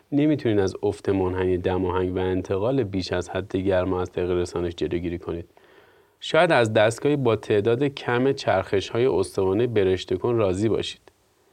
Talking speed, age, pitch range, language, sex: 150 wpm, 30-49, 95-125 Hz, Persian, male